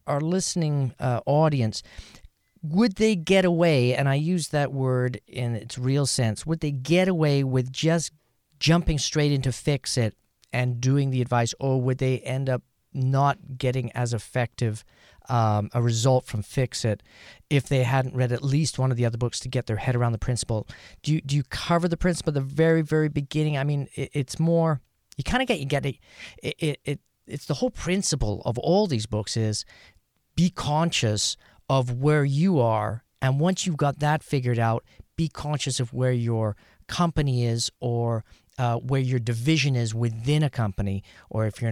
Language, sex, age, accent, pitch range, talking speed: English, male, 40-59, American, 115-150 Hz, 190 wpm